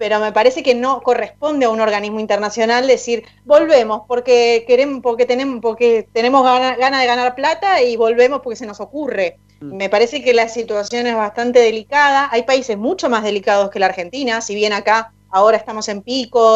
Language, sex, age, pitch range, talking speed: Spanish, female, 30-49, 190-245 Hz, 190 wpm